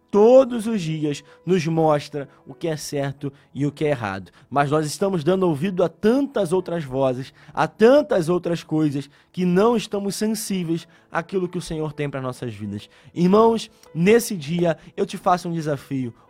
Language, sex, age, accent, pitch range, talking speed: Portuguese, male, 20-39, Brazilian, 145-195 Hz, 175 wpm